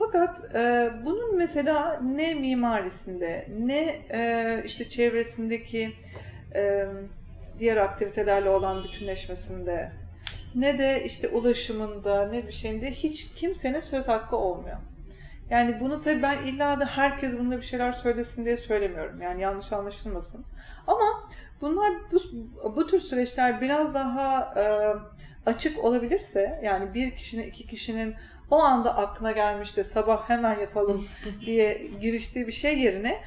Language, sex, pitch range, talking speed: Turkish, female, 205-255 Hz, 130 wpm